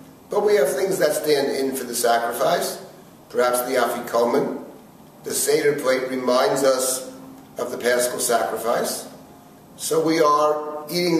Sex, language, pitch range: male, English, 130-155 Hz